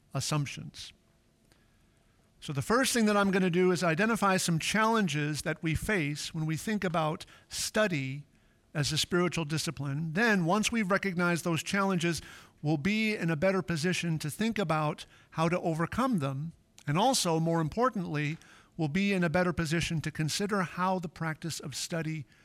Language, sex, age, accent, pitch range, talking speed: English, male, 50-69, American, 150-190 Hz, 165 wpm